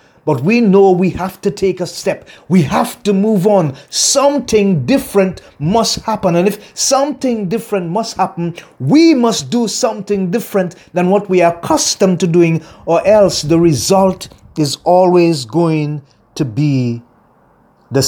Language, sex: English, male